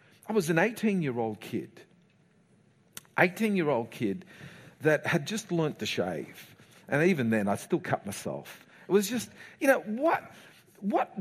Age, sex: 50-69, male